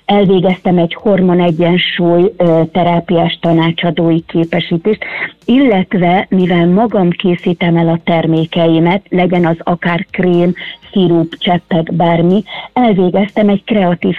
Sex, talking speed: female, 95 wpm